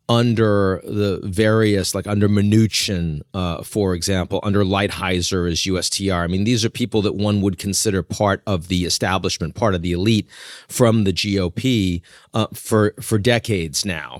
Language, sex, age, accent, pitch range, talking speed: English, male, 40-59, American, 95-120 Hz, 160 wpm